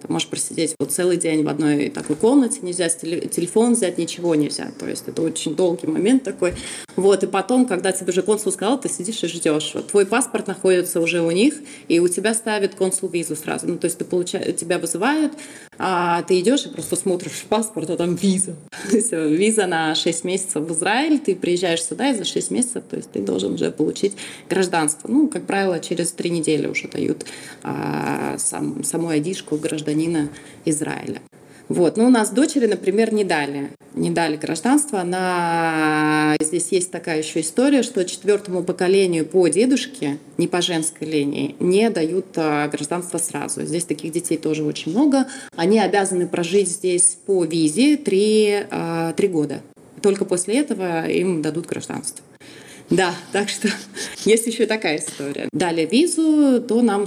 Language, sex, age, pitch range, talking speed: Russian, female, 20-39, 160-205 Hz, 170 wpm